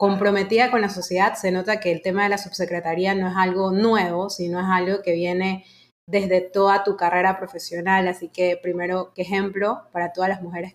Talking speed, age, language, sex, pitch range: 195 wpm, 20-39, Spanish, female, 185-220 Hz